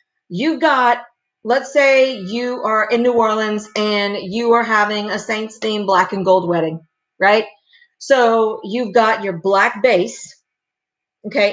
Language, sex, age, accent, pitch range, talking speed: English, female, 40-59, American, 205-245 Hz, 145 wpm